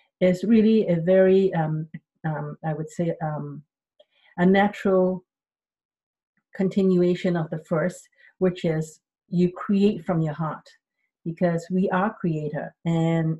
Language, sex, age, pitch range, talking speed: English, female, 50-69, 160-190 Hz, 125 wpm